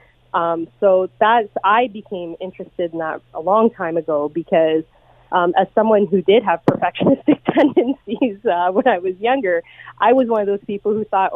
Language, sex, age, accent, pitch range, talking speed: English, female, 30-49, American, 165-205 Hz, 180 wpm